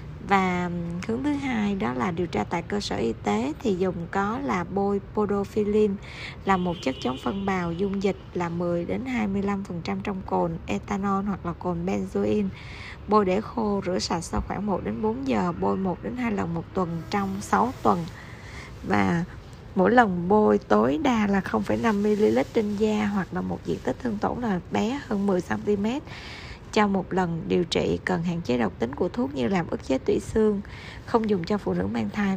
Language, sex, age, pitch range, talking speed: Vietnamese, female, 20-39, 175-215 Hz, 185 wpm